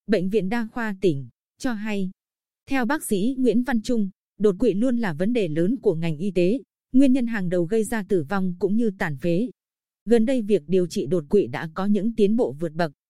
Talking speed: 230 wpm